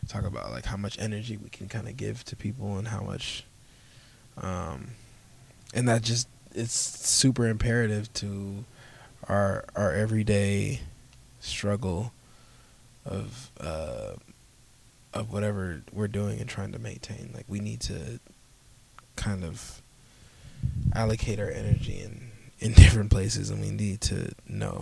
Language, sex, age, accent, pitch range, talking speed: English, male, 20-39, American, 105-120 Hz, 135 wpm